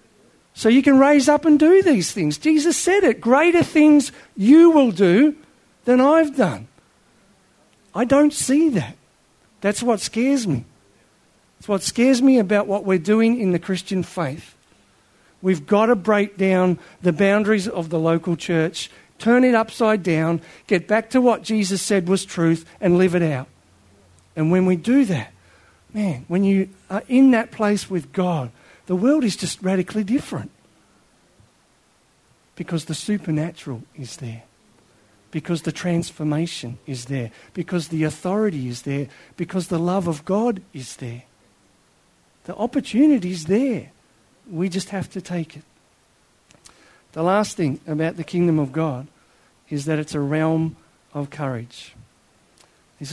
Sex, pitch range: male, 155-220 Hz